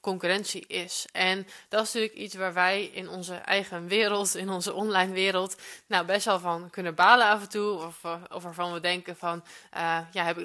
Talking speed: 205 wpm